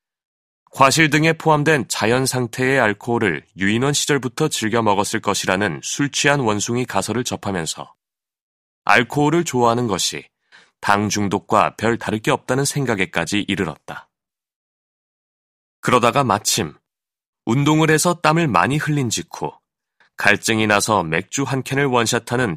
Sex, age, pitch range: male, 30-49, 105-145 Hz